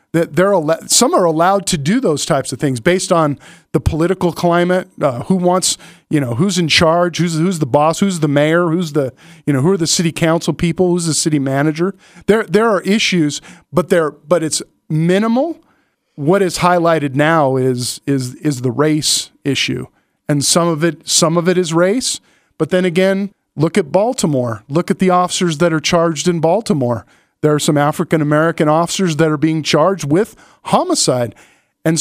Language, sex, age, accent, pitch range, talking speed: English, male, 40-59, American, 155-190 Hz, 190 wpm